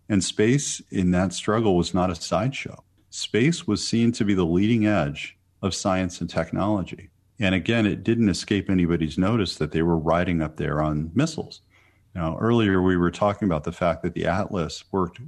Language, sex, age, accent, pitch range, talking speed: English, male, 40-59, American, 85-105 Hz, 190 wpm